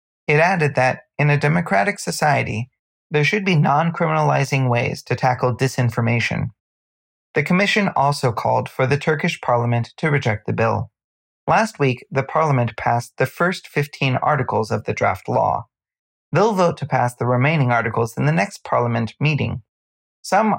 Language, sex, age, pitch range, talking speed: English, male, 30-49, 120-155 Hz, 155 wpm